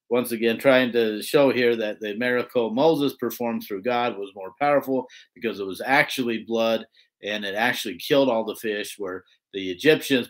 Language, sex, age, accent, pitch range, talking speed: English, male, 50-69, American, 115-145 Hz, 180 wpm